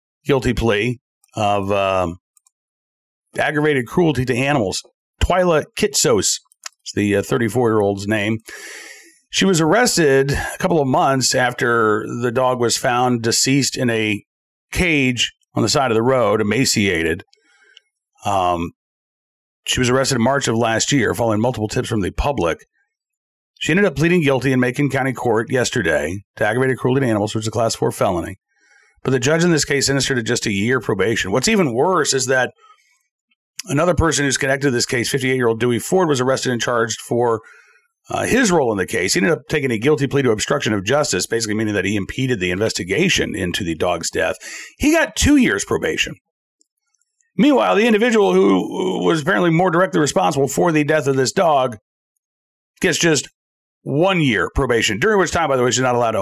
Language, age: English, 40-59